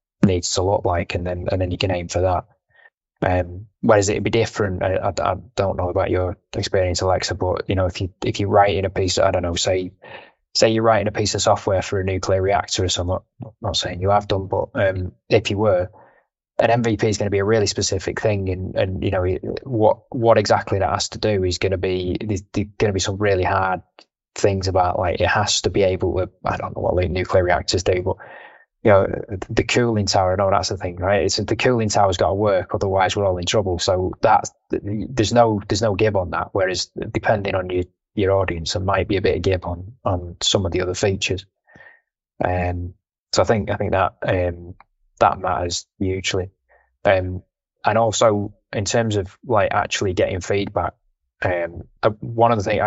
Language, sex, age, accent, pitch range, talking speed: English, male, 20-39, British, 90-105 Hz, 225 wpm